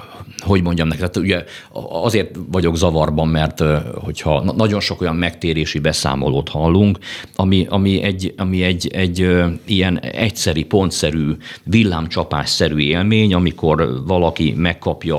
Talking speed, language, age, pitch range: 120 wpm, Hungarian, 50-69, 70-90 Hz